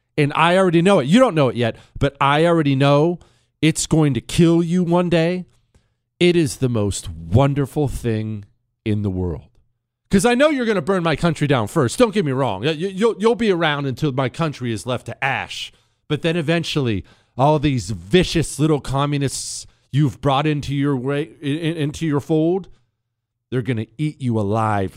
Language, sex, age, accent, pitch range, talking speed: English, male, 40-59, American, 120-170 Hz, 180 wpm